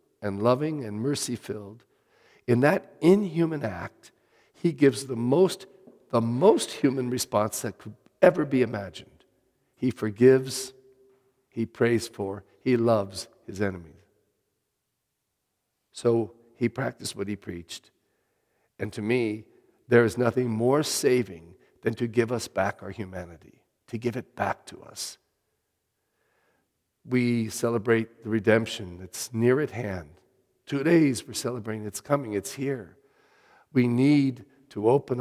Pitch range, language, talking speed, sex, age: 105-130 Hz, English, 130 wpm, male, 50-69